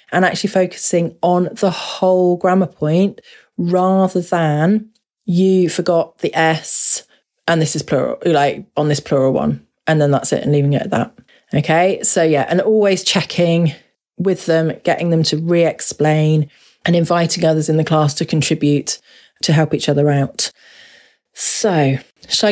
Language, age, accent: English, 30-49, British